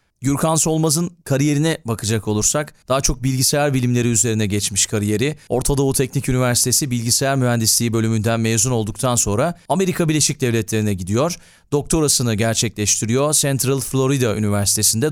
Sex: male